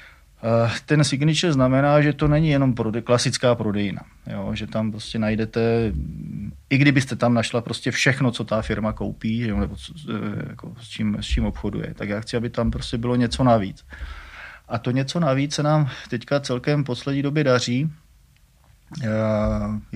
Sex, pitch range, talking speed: male, 110-125 Hz, 175 wpm